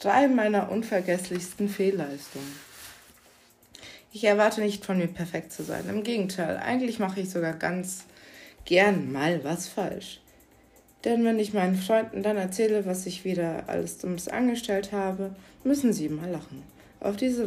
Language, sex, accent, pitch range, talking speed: German, female, German, 175-210 Hz, 150 wpm